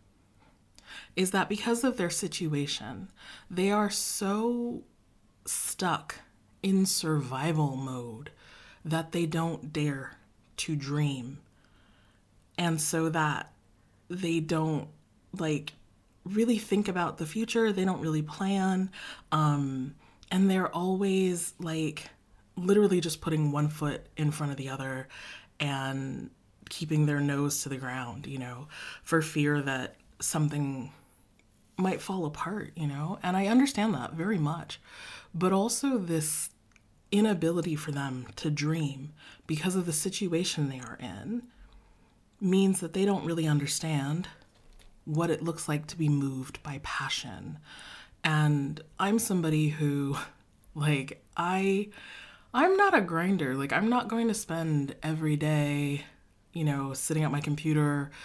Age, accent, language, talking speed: 30-49, American, English, 130 wpm